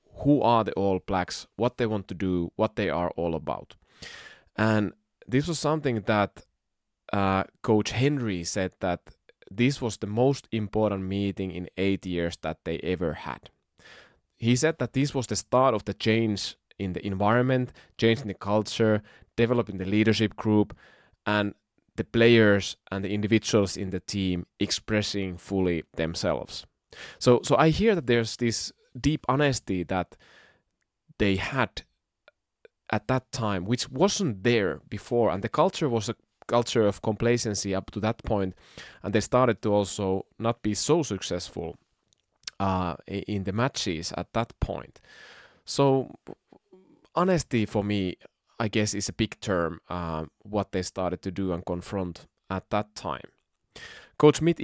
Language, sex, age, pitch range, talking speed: Finnish, male, 20-39, 95-120 Hz, 155 wpm